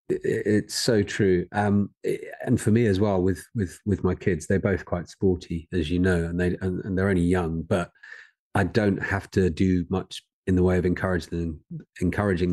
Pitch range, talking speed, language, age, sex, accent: 85-100 Hz, 200 wpm, English, 40-59, male, British